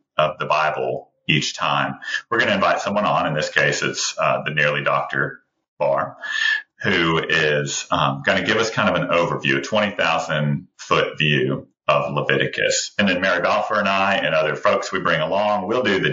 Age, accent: 30-49, American